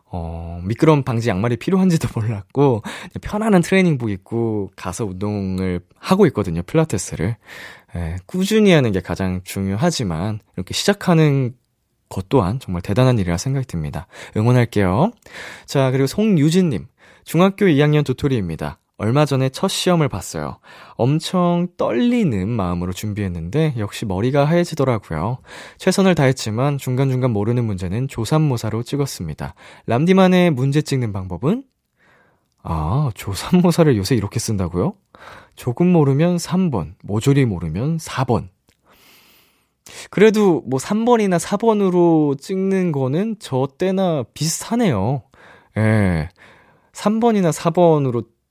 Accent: native